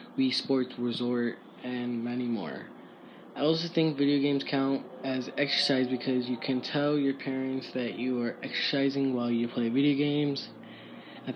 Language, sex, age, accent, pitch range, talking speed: English, male, 10-29, American, 125-140 Hz, 160 wpm